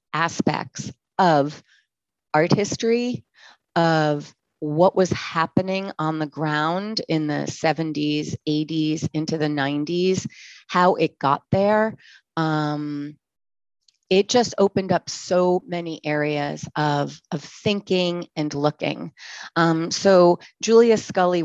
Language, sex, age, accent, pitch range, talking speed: English, female, 30-49, American, 155-185 Hz, 110 wpm